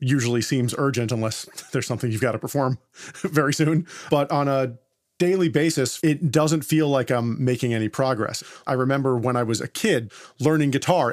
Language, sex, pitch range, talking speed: English, male, 130-160 Hz, 185 wpm